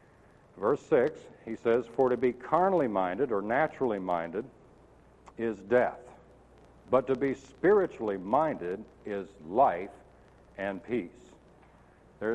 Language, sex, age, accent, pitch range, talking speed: English, male, 60-79, American, 110-150 Hz, 115 wpm